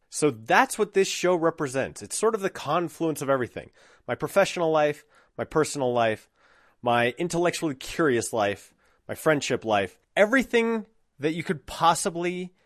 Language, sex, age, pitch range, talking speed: English, male, 30-49, 120-170 Hz, 145 wpm